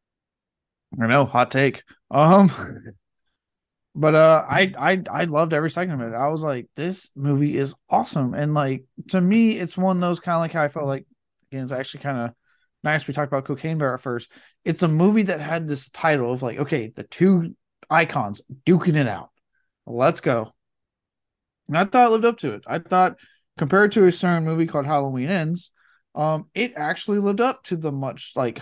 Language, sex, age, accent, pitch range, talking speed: English, male, 20-39, American, 130-160 Hz, 200 wpm